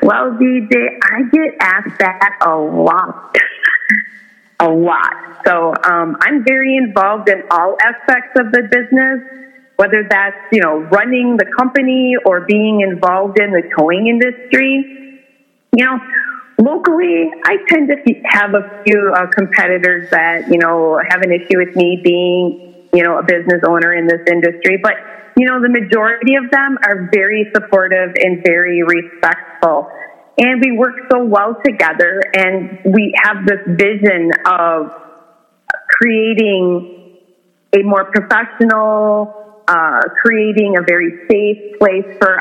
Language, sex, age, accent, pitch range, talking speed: English, female, 30-49, American, 180-245 Hz, 140 wpm